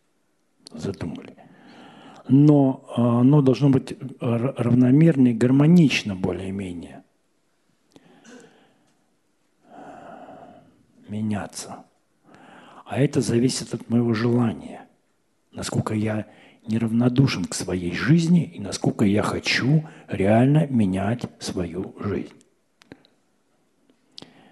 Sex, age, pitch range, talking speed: male, 50-69, 105-140 Hz, 75 wpm